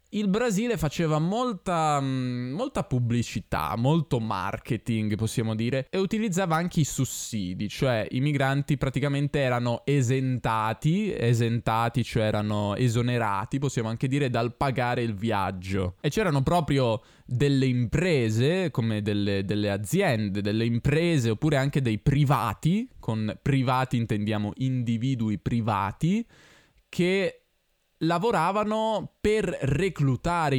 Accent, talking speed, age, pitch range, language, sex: native, 110 wpm, 20-39, 115-150 Hz, Italian, male